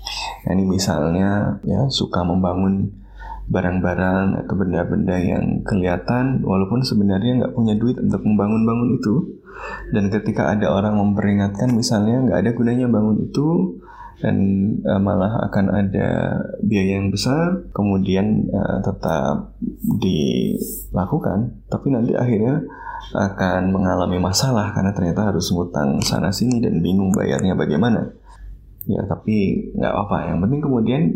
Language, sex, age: Indonesian, male, 20-39